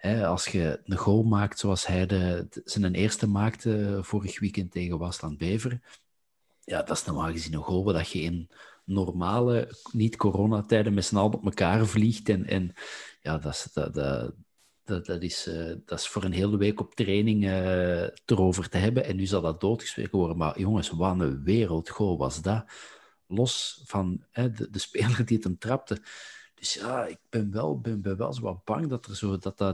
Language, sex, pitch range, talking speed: Dutch, male, 90-110 Hz, 190 wpm